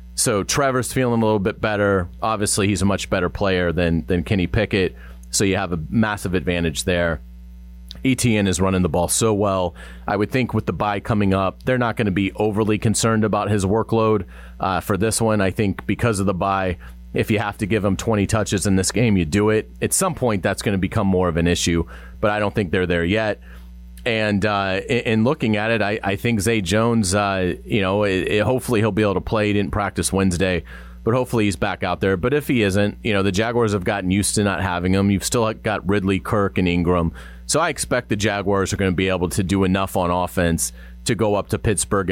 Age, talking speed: 30-49, 235 wpm